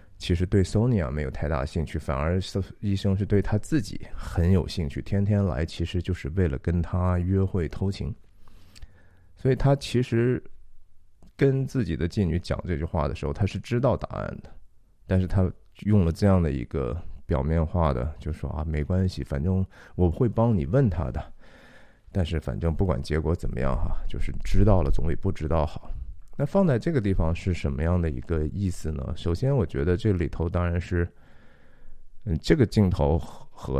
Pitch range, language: 80-100 Hz, Chinese